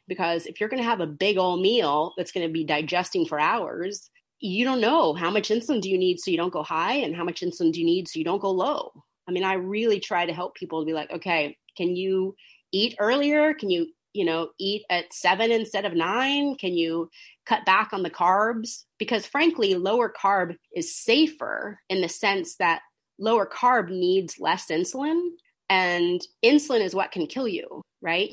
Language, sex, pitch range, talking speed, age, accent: English, female, 175-250 Hz, 210 wpm, 30-49, American